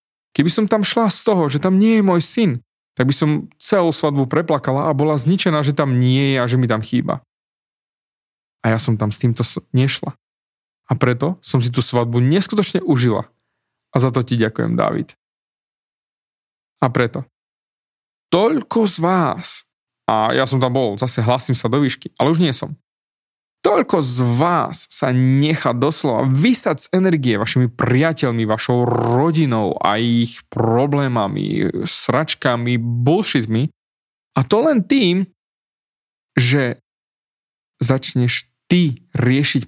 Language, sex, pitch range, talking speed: Slovak, male, 120-160 Hz, 145 wpm